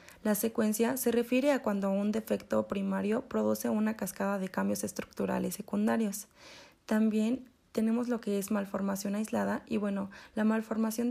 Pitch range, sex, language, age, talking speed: 195-235 Hz, female, Spanish, 20-39, 145 wpm